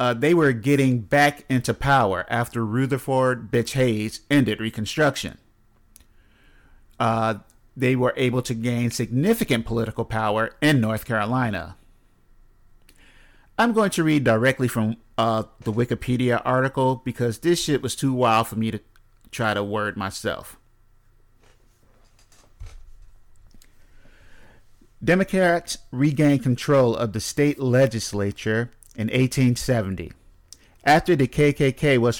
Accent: American